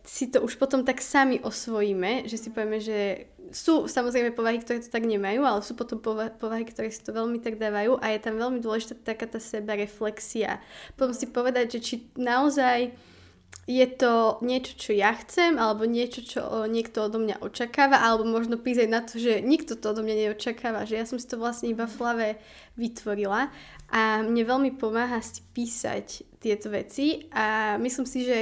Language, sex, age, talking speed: Slovak, female, 10-29, 185 wpm